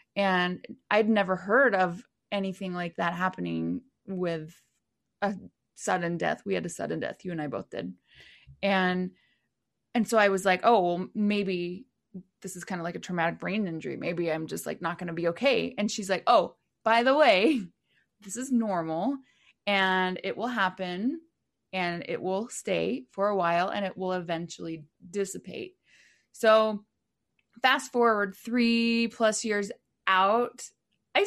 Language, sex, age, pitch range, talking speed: English, female, 20-39, 185-230 Hz, 165 wpm